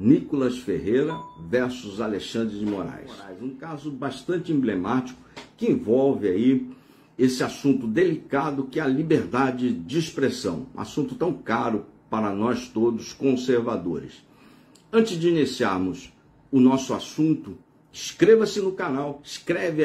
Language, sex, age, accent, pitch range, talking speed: Portuguese, male, 60-79, Brazilian, 125-165 Hz, 120 wpm